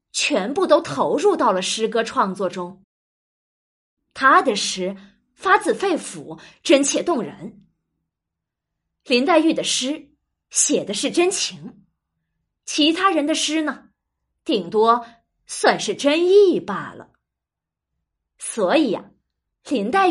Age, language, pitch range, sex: 20-39, Chinese, 220-325 Hz, female